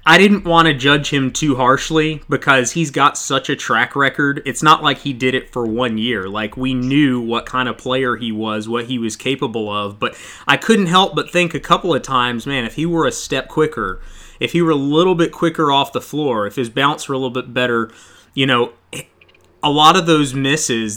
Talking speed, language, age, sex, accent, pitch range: 230 wpm, English, 30-49, male, American, 115-145 Hz